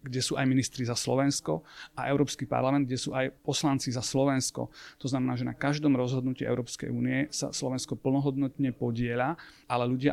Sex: male